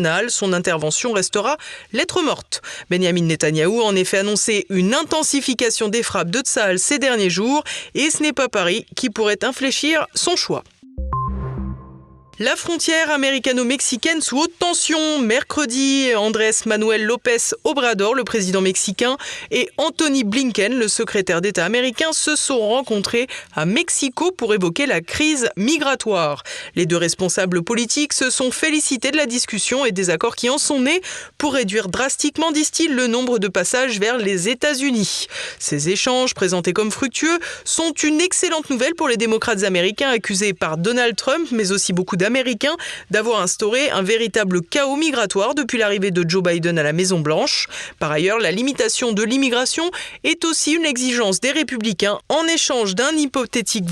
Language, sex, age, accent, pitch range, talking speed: French, female, 20-39, French, 195-285 Hz, 155 wpm